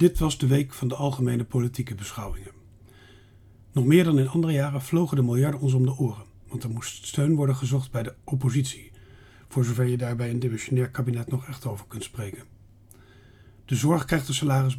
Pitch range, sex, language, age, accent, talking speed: 110-145 Hz, male, Dutch, 40-59, Dutch, 195 wpm